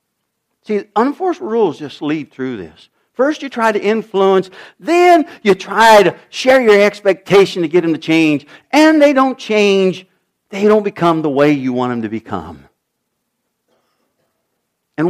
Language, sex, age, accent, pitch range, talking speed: English, male, 60-79, American, 160-250 Hz, 155 wpm